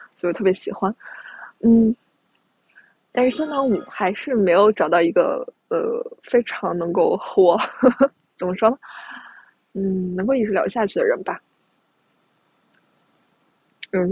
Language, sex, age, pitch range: Chinese, female, 20-39, 190-255 Hz